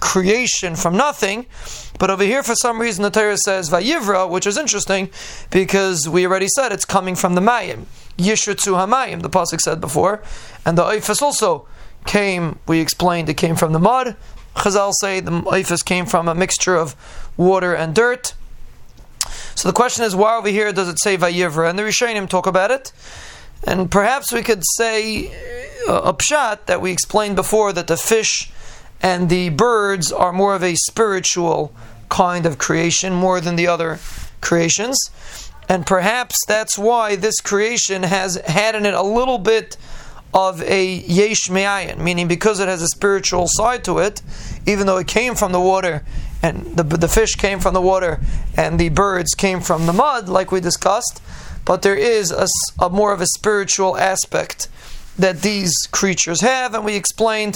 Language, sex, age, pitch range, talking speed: English, male, 30-49, 180-215 Hz, 180 wpm